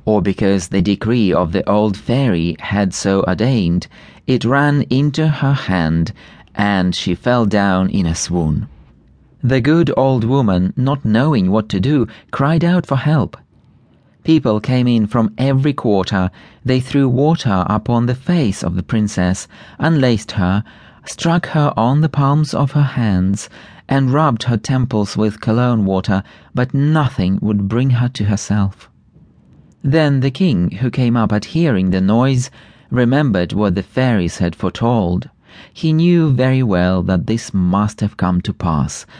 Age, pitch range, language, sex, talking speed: 40-59, 95-135 Hz, English, male, 155 wpm